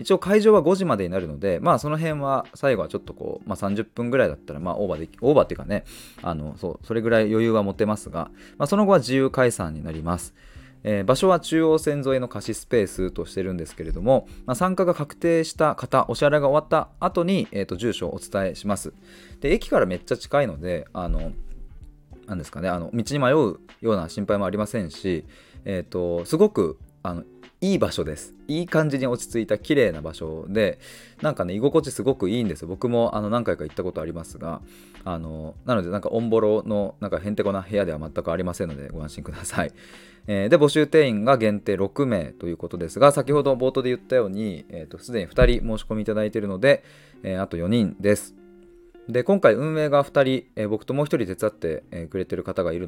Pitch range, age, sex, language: 90-140 Hz, 20-39, male, Japanese